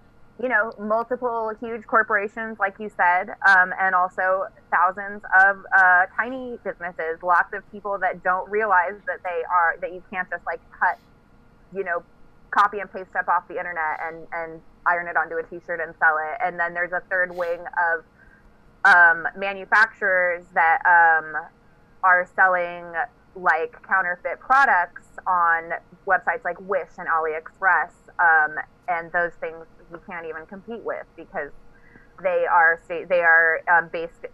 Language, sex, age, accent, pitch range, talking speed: English, female, 20-39, American, 165-200 Hz, 150 wpm